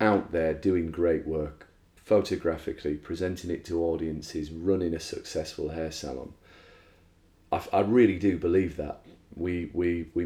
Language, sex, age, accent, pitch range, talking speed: English, male, 40-59, British, 80-90 Hz, 140 wpm